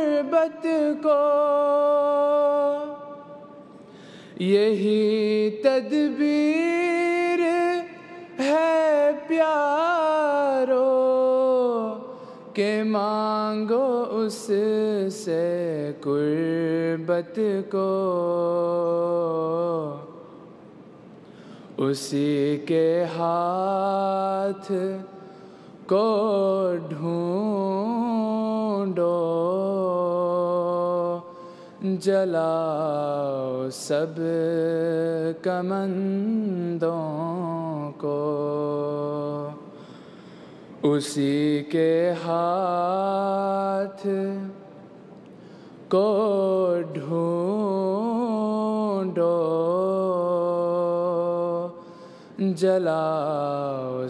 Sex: male